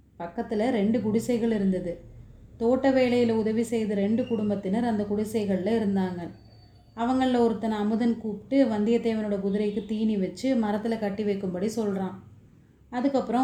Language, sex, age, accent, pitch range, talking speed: Tamil, female, 30-49, native, 200-235 Hz, 115 wpm